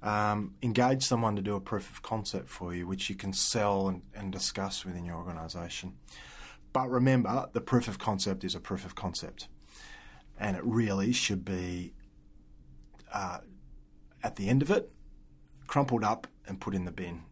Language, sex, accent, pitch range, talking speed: English, male, Australian, 90-115 Hz, 175 wpm